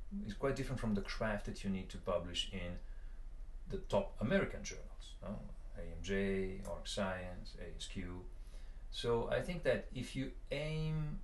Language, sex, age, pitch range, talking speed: English, male, 40-59, 95-125 Hz, 150 wpm